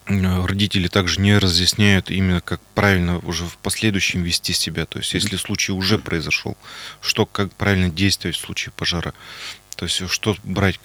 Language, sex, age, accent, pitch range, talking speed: Russian, male, 30-49, native, 85-105 Hz, 160 wpm